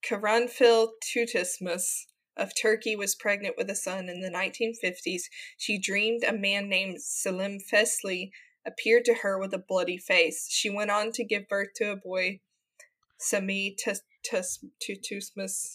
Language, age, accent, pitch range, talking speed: English, 20-39, American, 190-230 Hz, 140 wpm